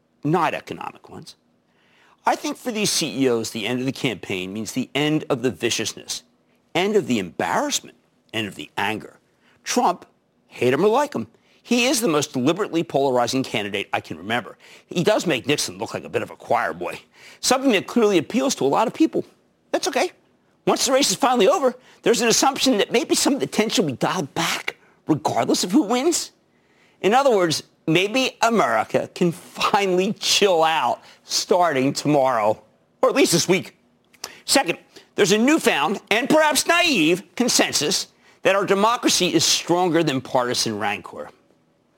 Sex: male